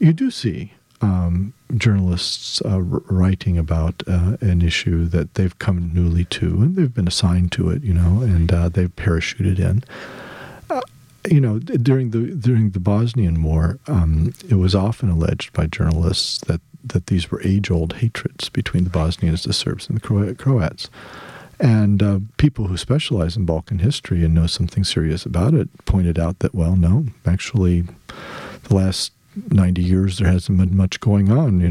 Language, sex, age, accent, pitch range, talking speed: English, male, 50-69, American, 90-120 Hz, 170 wpm